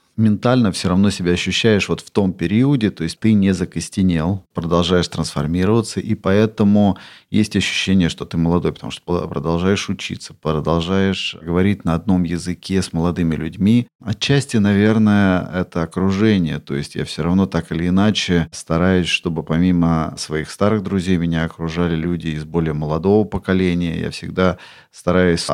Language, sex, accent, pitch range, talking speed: Russian, male, native, 80-95 Hz, 150 wpm